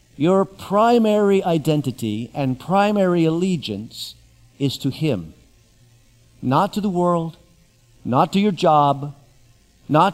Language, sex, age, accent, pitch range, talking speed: English, male, 50-69, American, 125-180 Hz, 105 wpm